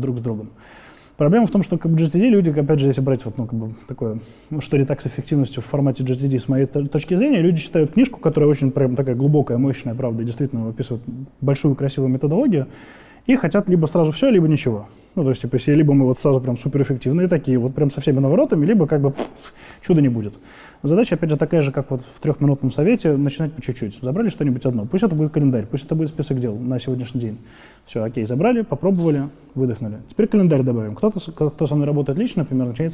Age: 20-39